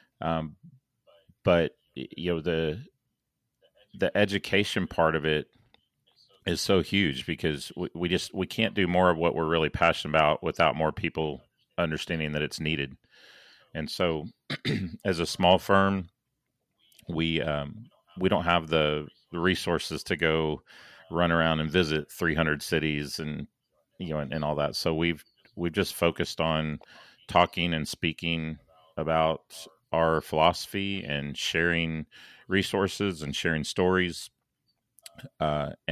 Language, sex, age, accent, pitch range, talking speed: English, male, 40-59, American, 75-85 Hz, 135 wpm